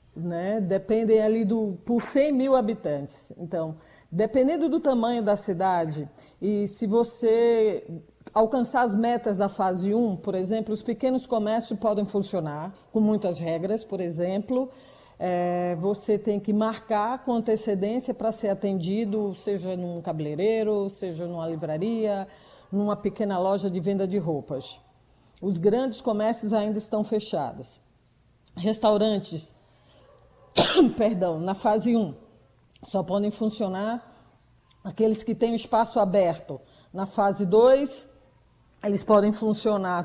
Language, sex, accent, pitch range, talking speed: Portuguese, female, Brazilian, 190-230 Hz, 125 wpm